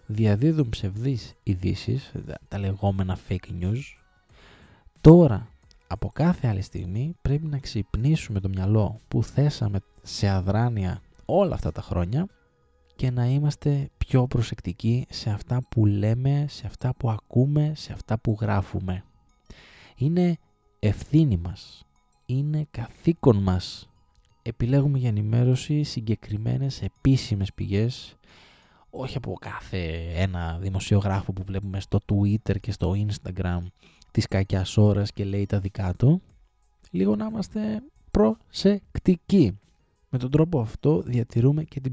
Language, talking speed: Greek, 120 wpm